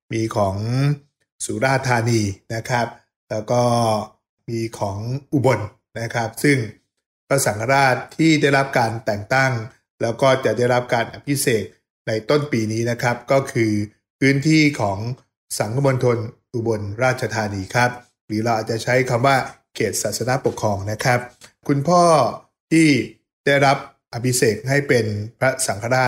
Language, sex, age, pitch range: English, male, 20-39, 110-135 Hz